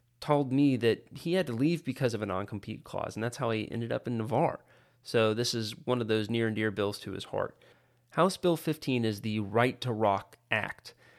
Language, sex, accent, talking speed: English, male, American, 225 wpm